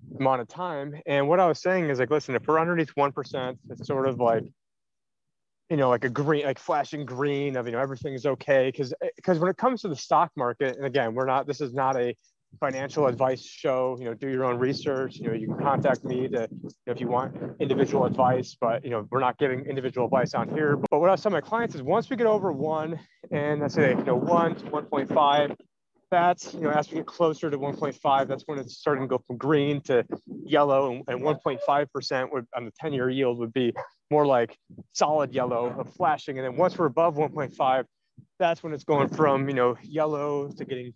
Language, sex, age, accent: English, male, 30-49, American